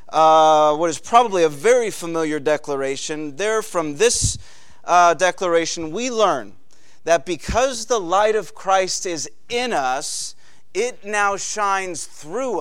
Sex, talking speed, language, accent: male, 135 wpm, English, American